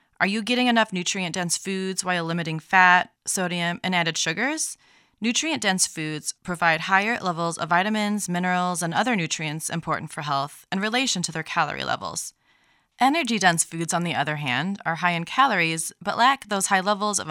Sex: female